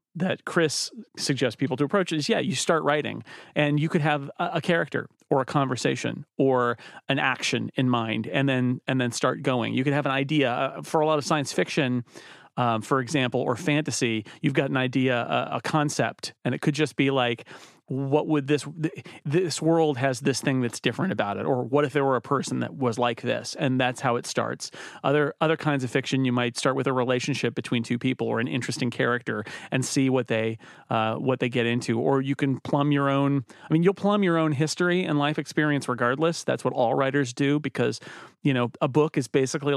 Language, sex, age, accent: English, male, 40-59, American